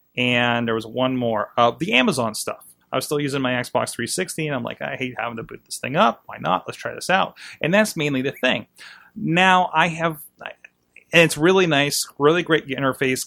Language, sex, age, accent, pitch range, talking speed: English, male, 30-49, American, 120-150 Hz, 215 wpm